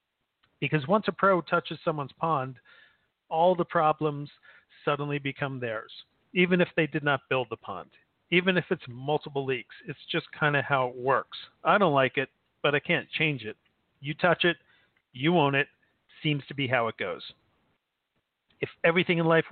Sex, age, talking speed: male, 40-59, 180 wpm